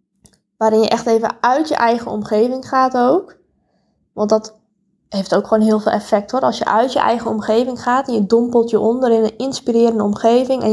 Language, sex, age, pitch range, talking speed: Dutch, female, 10-29, 215-250 Hz, 200 wpm